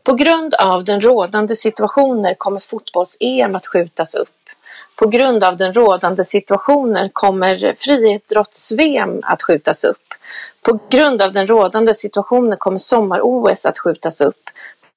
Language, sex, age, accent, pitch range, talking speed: Swedish, female, 40-59, native, 195-250 Hz, 135 wpm